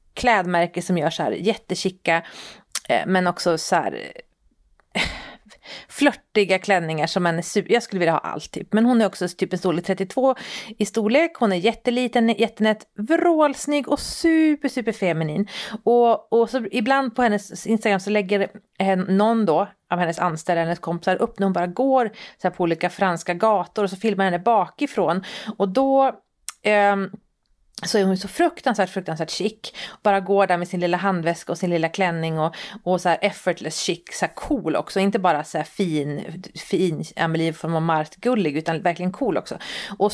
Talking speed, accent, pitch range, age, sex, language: 175 wpm, native, 175-225 Hz, 30-49, female, Swedish